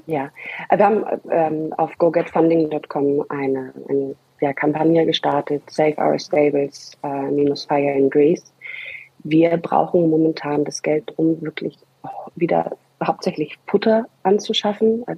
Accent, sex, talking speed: German, female, 125 wpm